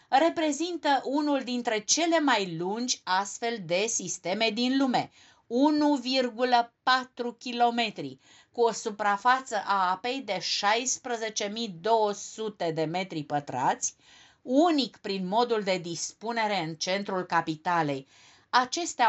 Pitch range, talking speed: 185-250 Hz, 95 wpm